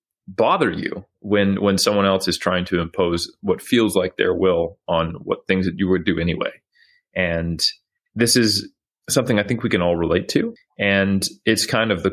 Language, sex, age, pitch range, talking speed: English, male, 30-49, 90-105 Hz, 195 wpm